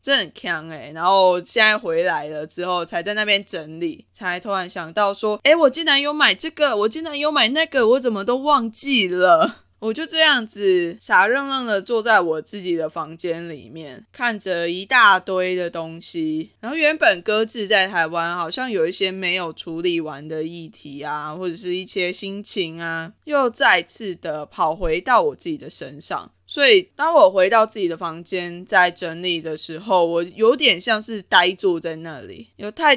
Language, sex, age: Chinese, female, 20-39